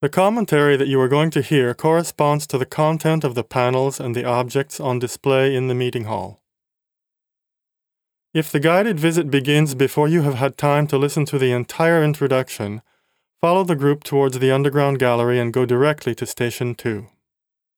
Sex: male